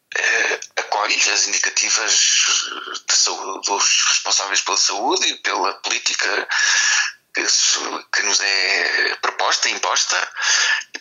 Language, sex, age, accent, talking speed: Portuguese, male, 50-69, Portuguese, 105 wpm